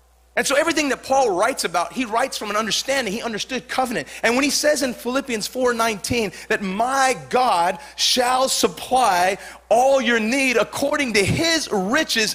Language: English